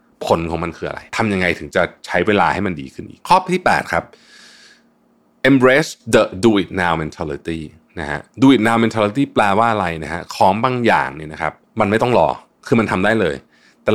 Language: Thai